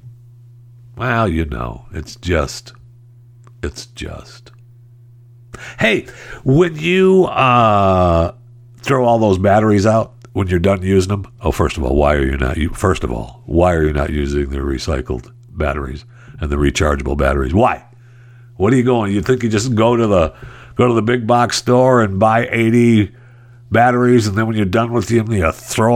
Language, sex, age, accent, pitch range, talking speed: English, male, 60-79, American, 90-120 Hz, 175 wpm